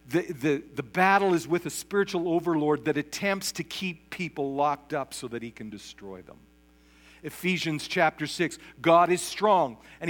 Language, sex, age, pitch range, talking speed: English, male, 50-69, 140-190 Hz, 170 wpm